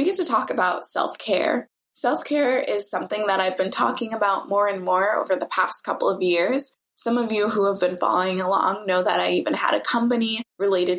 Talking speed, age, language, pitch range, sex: 215 wpm, 20-39, English, 185-240 Hz, female